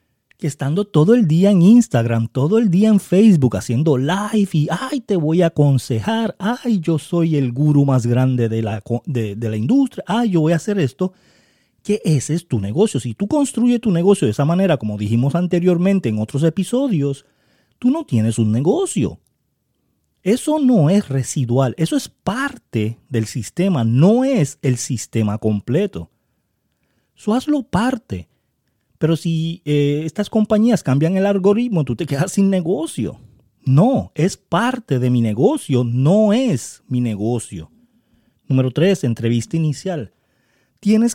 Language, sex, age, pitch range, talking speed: Spanish, male, 30-49, 125-200 Hz, 155 wpm